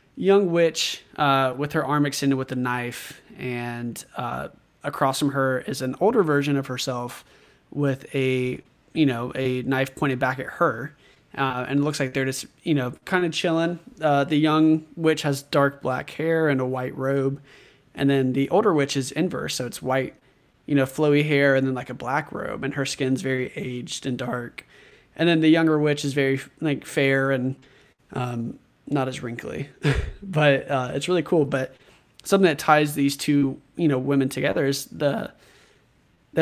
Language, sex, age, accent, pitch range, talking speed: English, male, 20-39, American, 130-150 Hz, 185 wpm